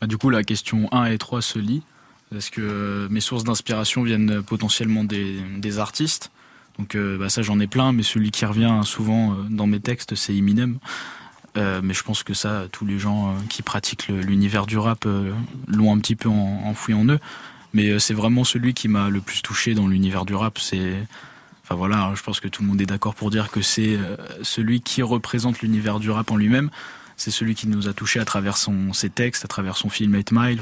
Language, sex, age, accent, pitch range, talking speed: French, male, 20-39, French, 105-120 Hz, 225 wpm